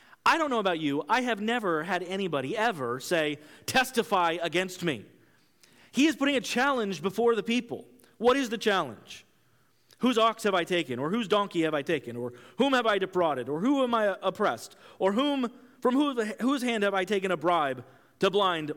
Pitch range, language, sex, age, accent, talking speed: 160-235 Hz, English, male, 30-49, American, 195 wpm